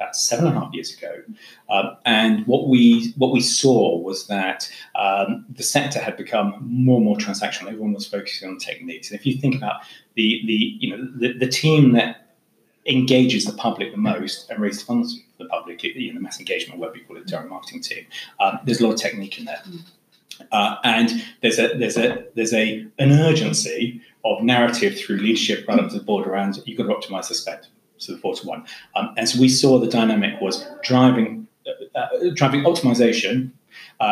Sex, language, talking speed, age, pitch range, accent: male, English, 200 wpm, 30-49, 115-185 Hz, British